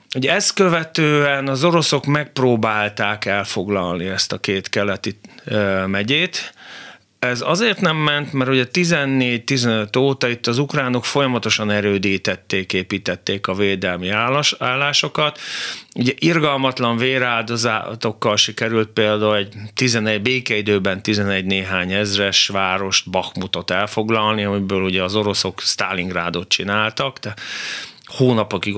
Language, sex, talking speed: Hungarian, male, 105 wpm